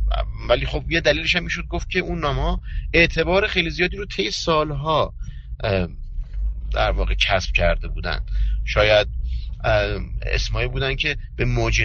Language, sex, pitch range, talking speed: Persian, male, 90-135 Hz, 135 wpm